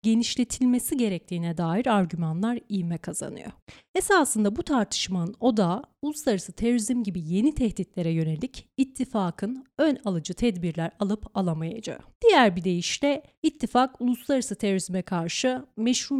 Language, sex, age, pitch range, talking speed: Turkish, female, 30-49, 185-270 Hz, 115 wpm